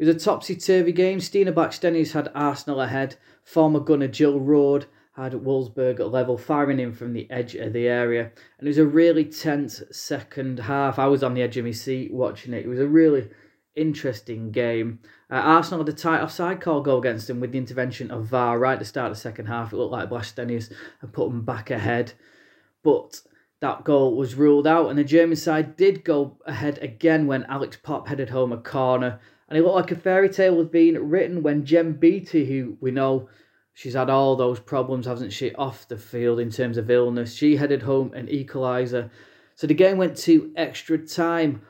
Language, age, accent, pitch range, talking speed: English, 20-39, British, 125-155 Hz, 210 wpm